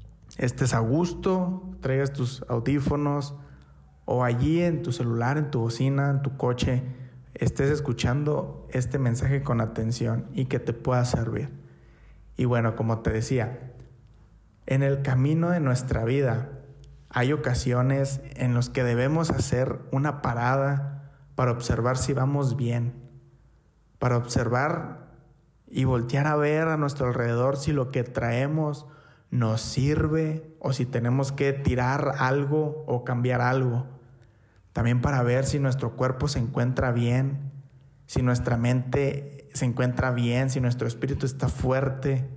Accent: Mexican